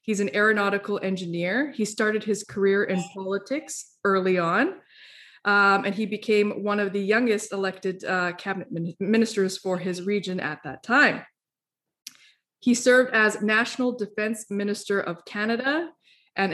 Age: 20-39